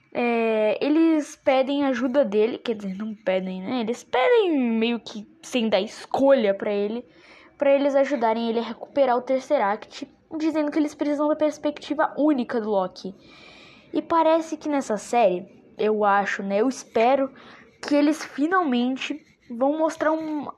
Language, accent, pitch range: Portuguese, Brazilian, 230-295 Hz